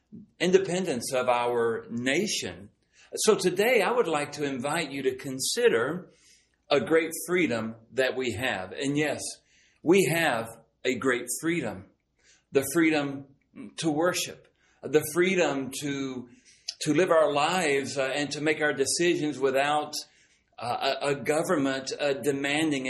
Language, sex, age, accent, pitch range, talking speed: English, male, 40-59, American, 130-155 Hz, 125 wpm